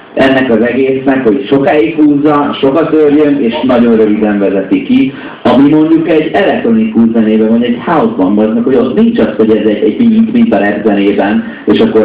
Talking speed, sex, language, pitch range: 170 wpm, male, Hungarian, 100-135 Hz